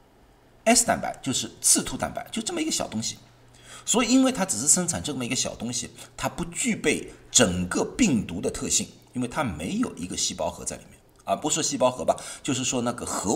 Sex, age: male, 50-69